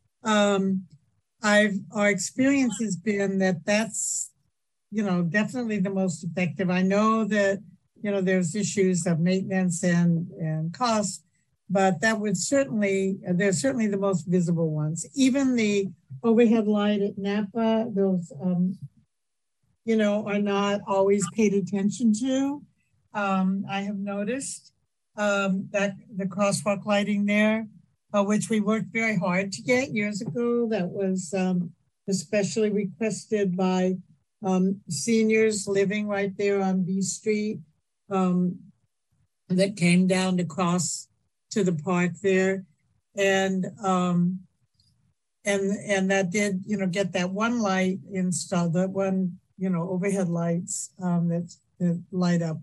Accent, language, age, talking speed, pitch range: American, English, 60-79, 135 wpm, 180-205 Hz